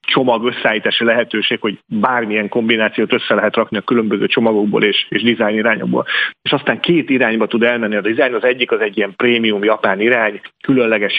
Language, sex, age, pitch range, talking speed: Hungarian, male, 40-59, 105-120 Hz, 170 wpm